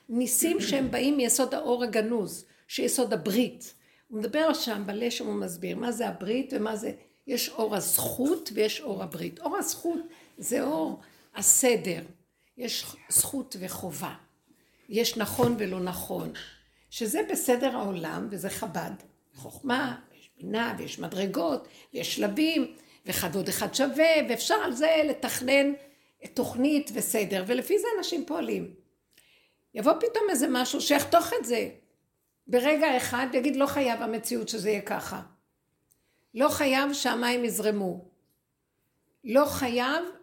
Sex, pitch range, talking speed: female, 220-290 Hz, 125 wpm